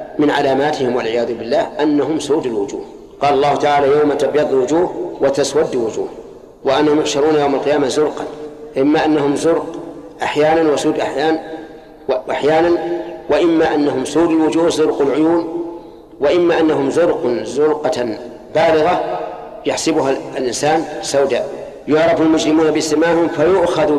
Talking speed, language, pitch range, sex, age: 115 wpm, Arabic, 140-165 Hz, male, 50-69